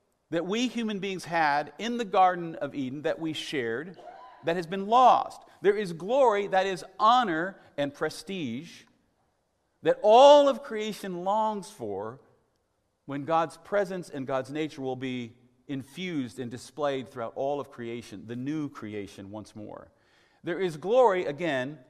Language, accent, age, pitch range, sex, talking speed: English, American, 50-69, 120-195 Hz, male, 150 wpm